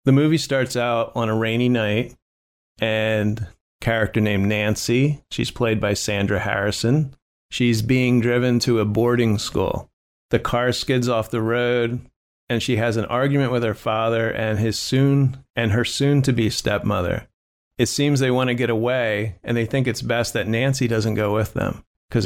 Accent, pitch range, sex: American, 105-125 Hz, male